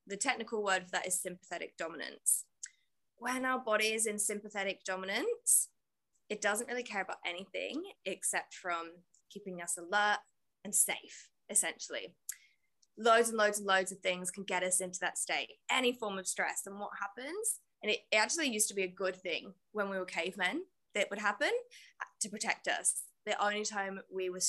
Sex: female